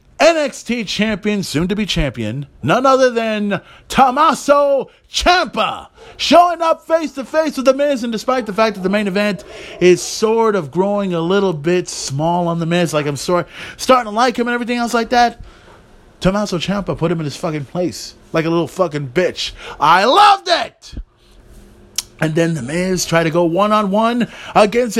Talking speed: 185 wpm